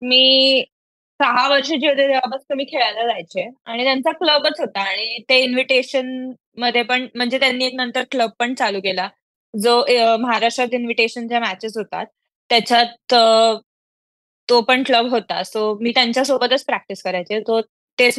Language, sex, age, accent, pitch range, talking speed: Marathi, female, 20-39, native, 225-260 Hz, 140 wpm